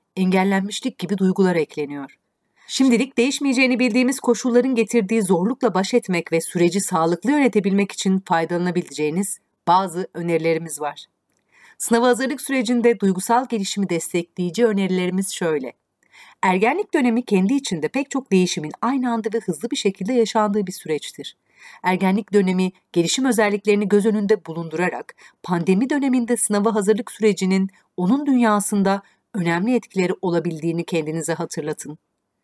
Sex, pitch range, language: female, 180-235 Hz, Turkish